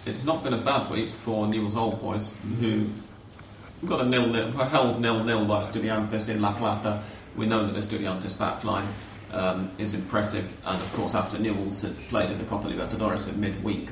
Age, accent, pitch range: 30-49, British, 100-110 Hz